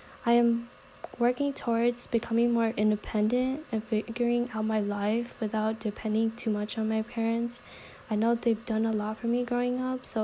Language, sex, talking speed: English, female, 175 wpm